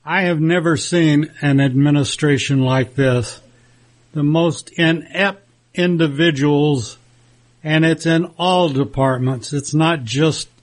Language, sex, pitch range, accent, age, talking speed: English, male, 125-170 Hz, American, 60-79, 115 wpm